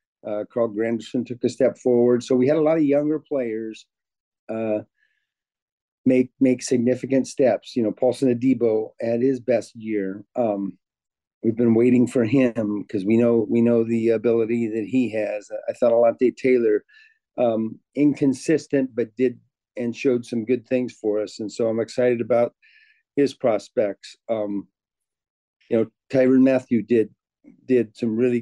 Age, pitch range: 40-59, 115-130 Hz